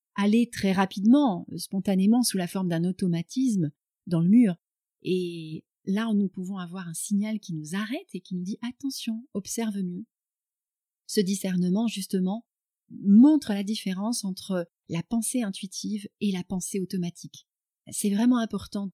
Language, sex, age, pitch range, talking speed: French, female, 30-49, 180-225 Hz, 145 wpm